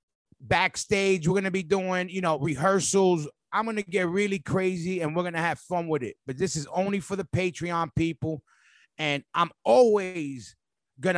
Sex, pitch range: male, 155-190 Hz